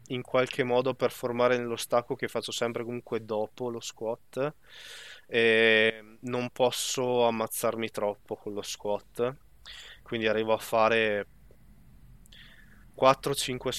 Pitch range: 110-130 Hz